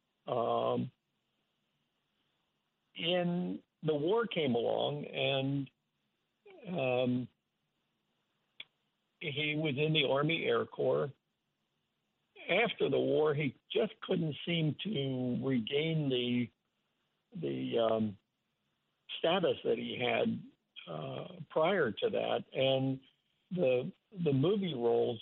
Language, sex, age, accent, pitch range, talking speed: English, male, 60-79, American, 125-165 Hz, 95 wpm